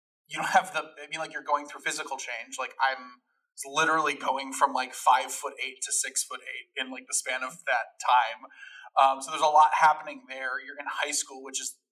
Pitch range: 130-200 Hz